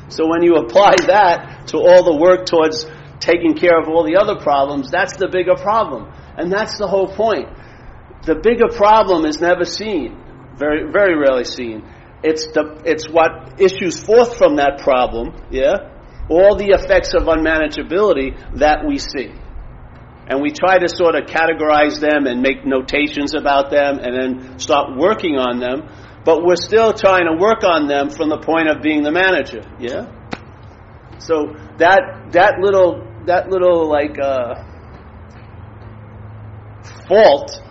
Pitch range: 140-185 Hz